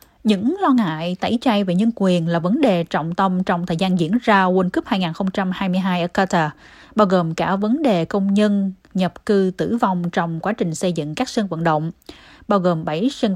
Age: 20-39